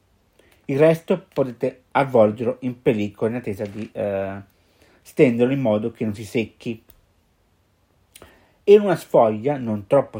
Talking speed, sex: 130 wpm, male